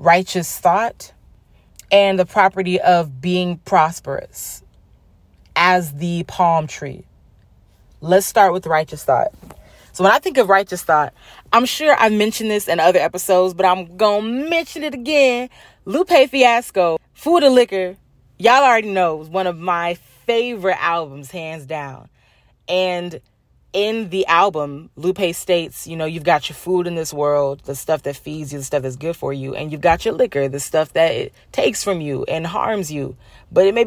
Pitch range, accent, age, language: 155-210 Hz, American, 30-49, English